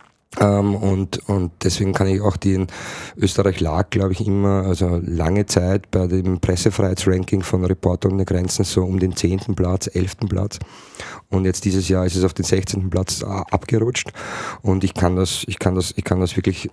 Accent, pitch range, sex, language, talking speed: Belgian, 95-105 Hz, male, German, 195 wpm